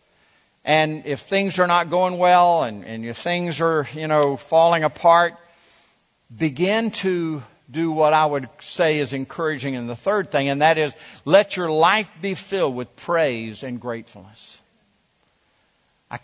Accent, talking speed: American, 155 wpm